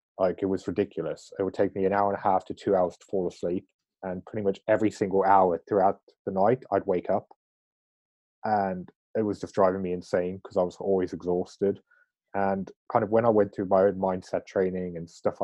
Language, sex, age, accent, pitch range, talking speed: English, male, 20-39, British, 95-115 Hz, 220 wpm